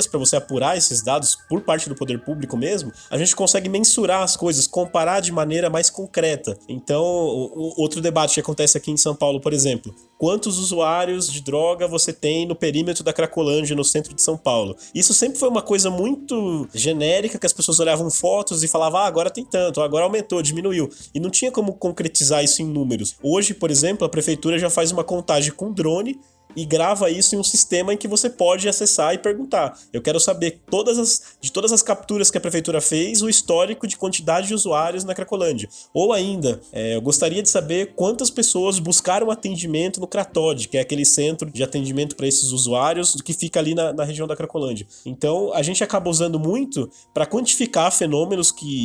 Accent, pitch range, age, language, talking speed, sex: Brazilian, 150-195 Hz, 20-39, Portuguese, 195 wpm, male